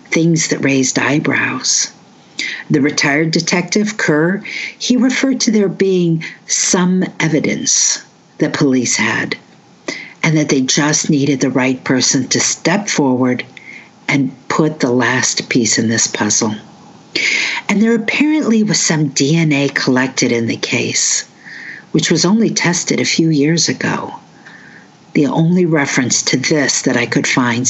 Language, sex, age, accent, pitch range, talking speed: English, female, 50-69, American, 135-170 Hz, 140 wpm